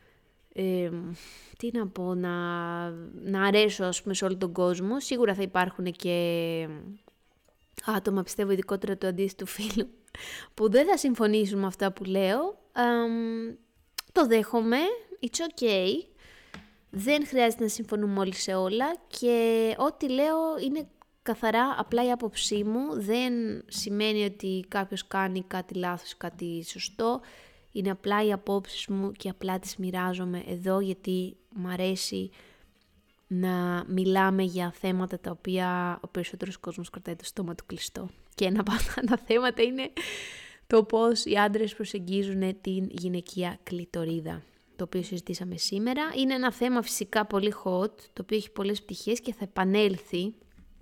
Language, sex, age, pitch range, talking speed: English, female, 20-39, 185-230 Hz, 140 wpm